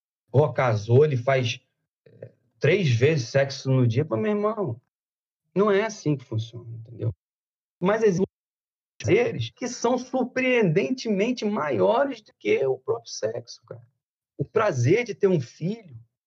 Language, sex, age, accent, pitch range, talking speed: Portuguese, male, 40-59, Brazilian, 145-225 Hz, 135 wpm